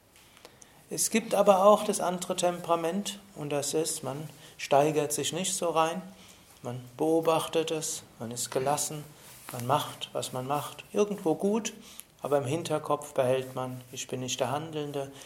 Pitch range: 130-160 Hz